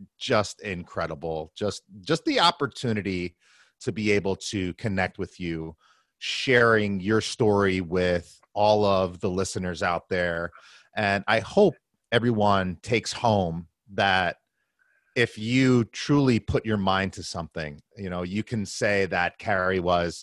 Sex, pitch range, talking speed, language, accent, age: male, 85-100 Hz, 135 wpm, English, American, 30-49